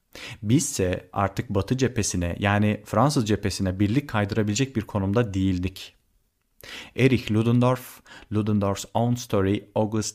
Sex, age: male, 40-59